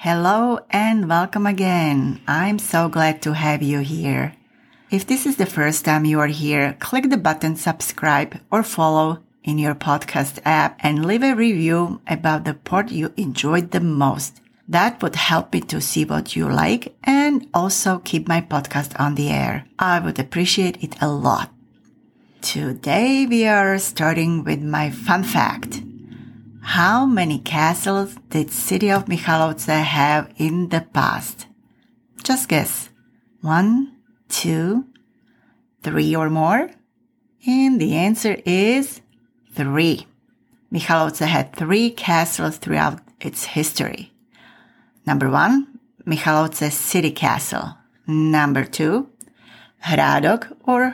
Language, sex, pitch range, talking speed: English, female, 155-235 Hz, 130 wpm